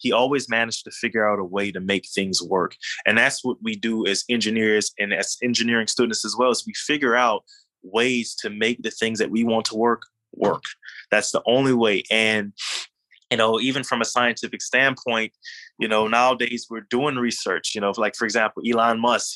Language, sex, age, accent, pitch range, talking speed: English, male, 20-39, American, 110-130 Hz, 200 wpm